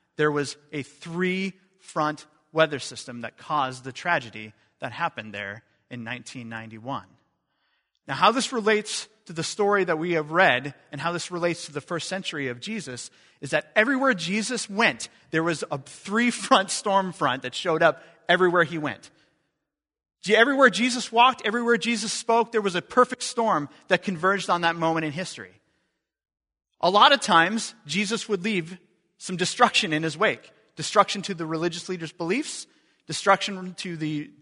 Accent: American